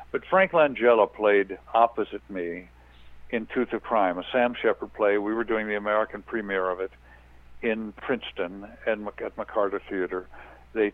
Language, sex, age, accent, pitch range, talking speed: English, male, 60-79, American, 90-115 Hz, 160 wpm